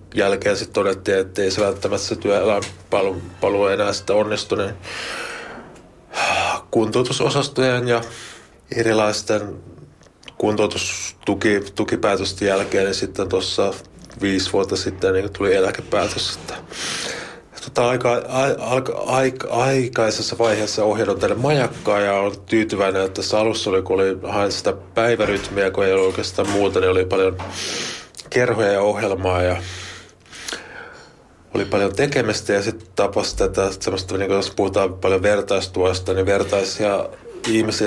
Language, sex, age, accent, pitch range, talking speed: Finnish, male, 30-49, native, 95-115 Hz, 125 wpm